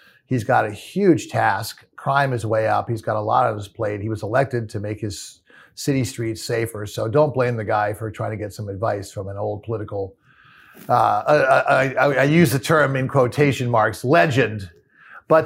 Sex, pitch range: male, 110-130 Hz